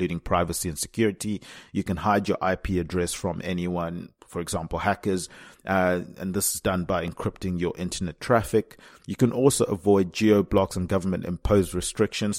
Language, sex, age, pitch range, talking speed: English, male, 30-49, 90-100 Hz, 170 wpm